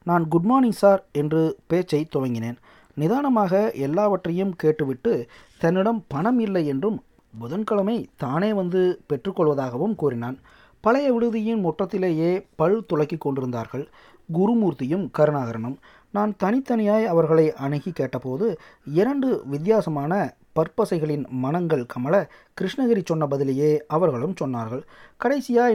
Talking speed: 100 wpm